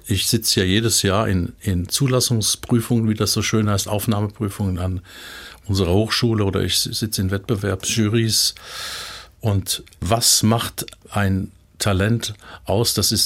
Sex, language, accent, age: male, German, German, 50-69